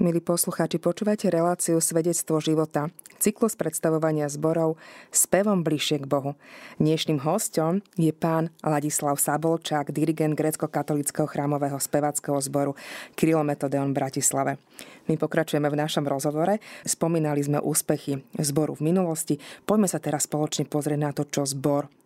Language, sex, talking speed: Slovak, female, 125 wpm